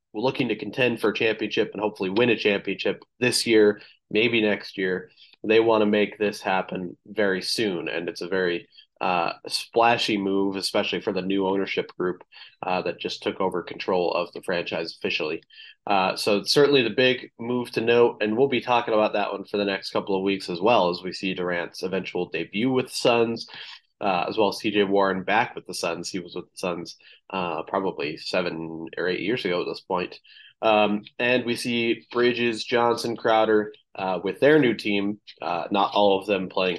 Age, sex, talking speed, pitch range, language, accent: 20-39, male, 200 wpm, 100-125 Hz, English, American